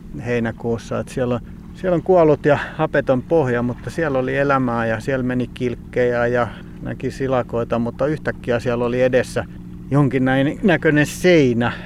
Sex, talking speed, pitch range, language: male, 150 wpm, 115-130 Hz, Finnish